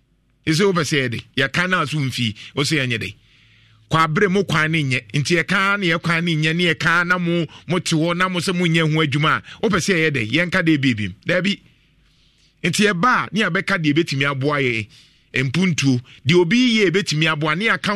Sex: male